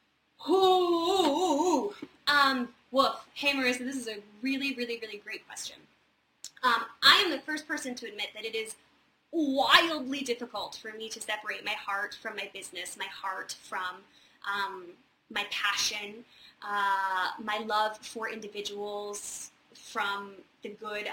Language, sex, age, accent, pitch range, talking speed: English, female, 20-39, American, 210-275 Hz, 150 wpm